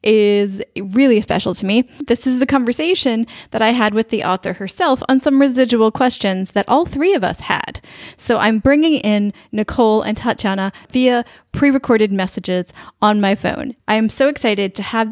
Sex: female